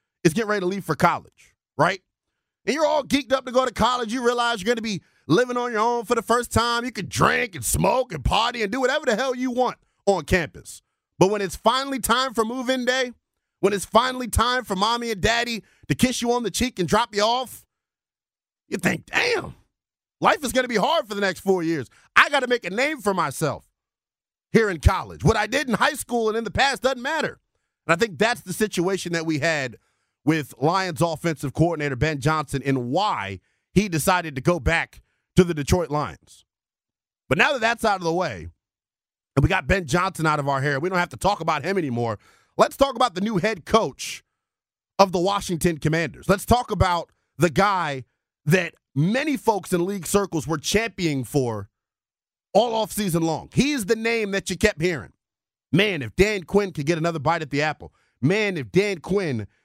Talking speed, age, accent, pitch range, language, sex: 215 wpm, 30-49, American, 160-235 Hz, English, male